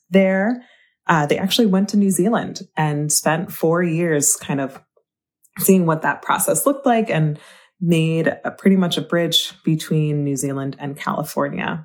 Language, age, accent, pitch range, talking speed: English, 20-39, American, 150-190 Hz, 160 wpm